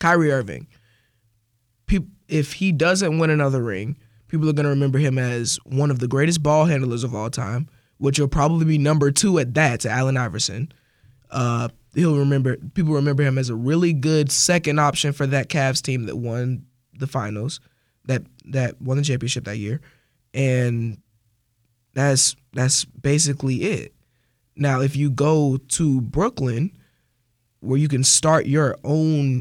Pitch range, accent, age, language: 125-150 Hz, American, 20-39, English